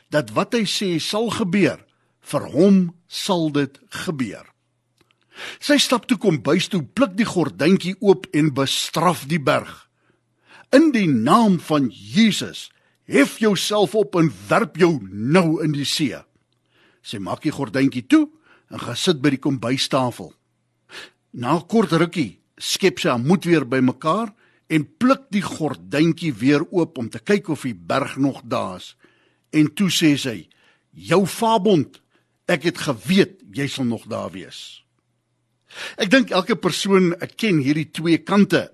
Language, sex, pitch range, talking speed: English, male, 140-200 Hz, 150 wpm